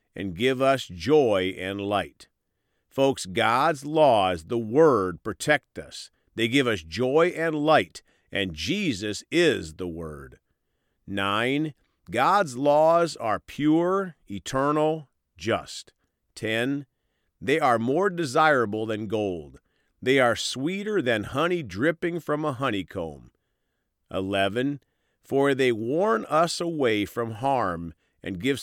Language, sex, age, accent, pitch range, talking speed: English, male, 50-69, American, 95-150 Hz, 120 wpm